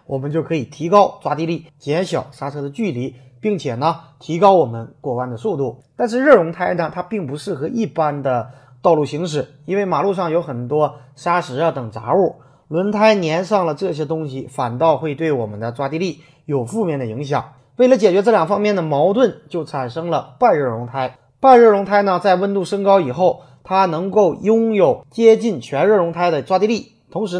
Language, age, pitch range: Chinese, 30-49, 135-195 Hz